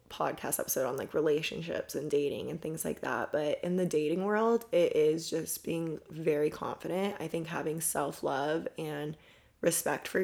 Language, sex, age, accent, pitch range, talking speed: English, female, 20-39, American, 160-185 Hz, 170 wpm